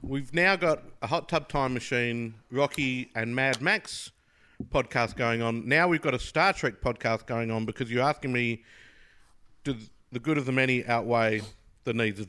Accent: Australian